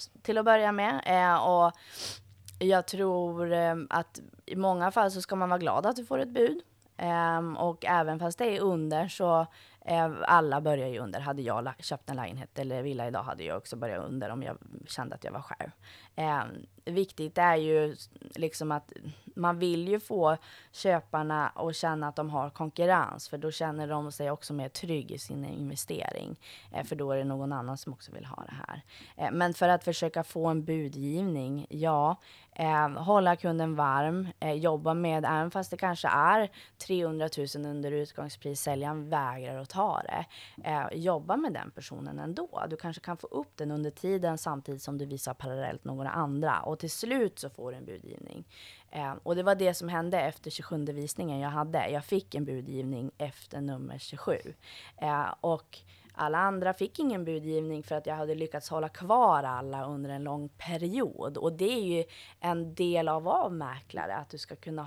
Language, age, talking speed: Swedish, 20-39, 185 wpm